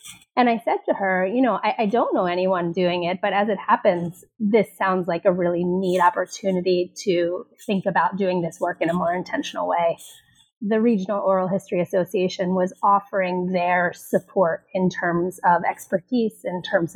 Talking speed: 180 wpm